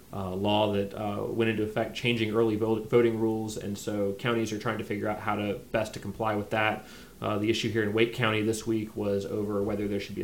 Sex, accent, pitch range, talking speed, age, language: male, American, 100-110 Hz, 240 wpm, 30-49, English